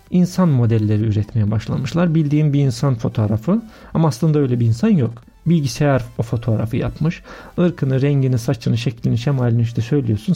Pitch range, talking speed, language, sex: 115-145 Hz, 145 wpm, Turkish, male